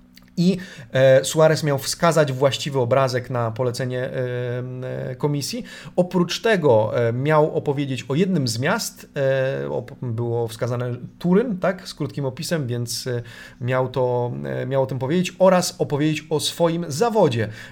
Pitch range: 125-160 Hz